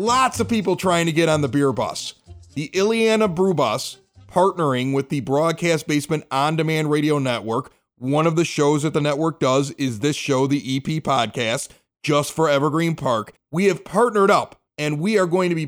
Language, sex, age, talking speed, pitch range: English, male, 30-49, 195 wpm, 145-190 Hz